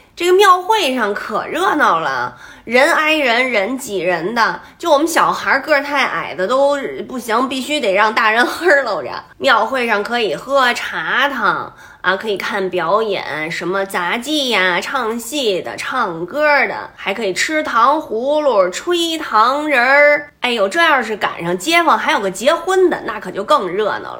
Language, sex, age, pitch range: Chinese, female, 20-39, 210-315 Hz